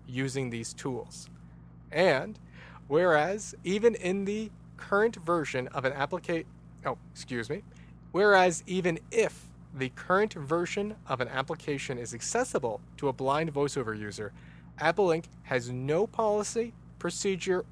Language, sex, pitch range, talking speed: English, male, 115-175 Hz, 130 wpm